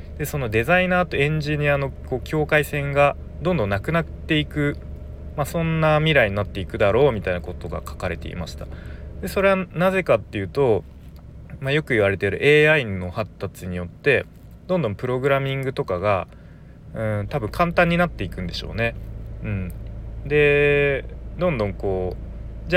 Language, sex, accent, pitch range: Japanese, male, native, 90-150 Hz